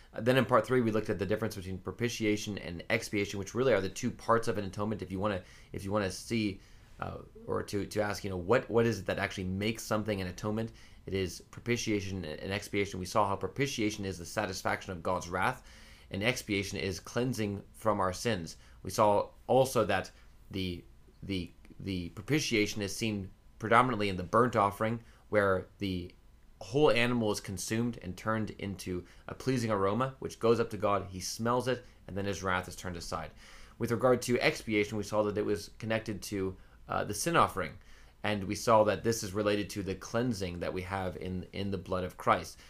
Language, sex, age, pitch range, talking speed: English, male, 20-39, 95-110 Hz, 205 wpm